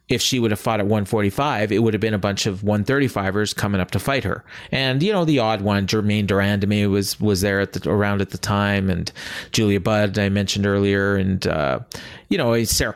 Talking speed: 230 wpm